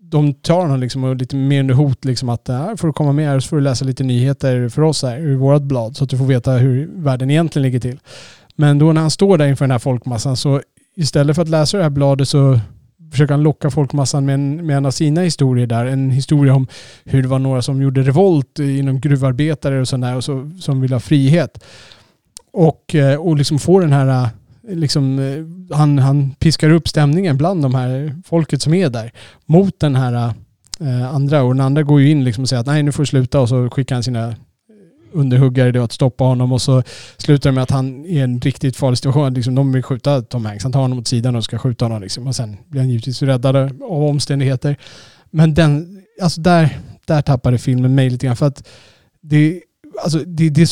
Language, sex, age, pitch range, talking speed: Swedish, male, 30-49, 130-150 Hz, 220 wpm